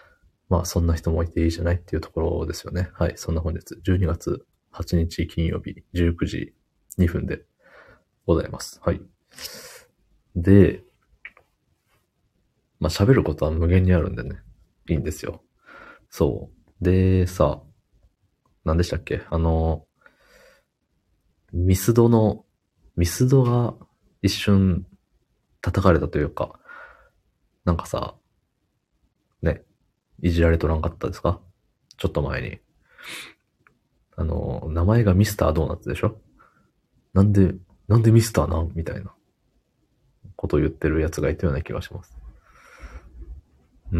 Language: Japanese